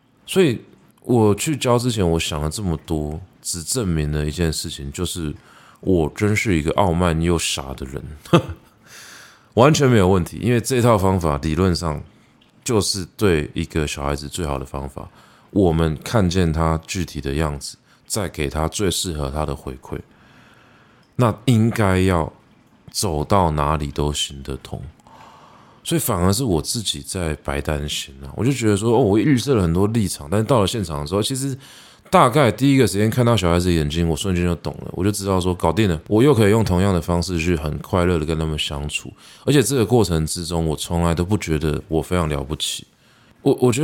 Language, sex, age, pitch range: Chinese, male, 20-39, 75-105 Hz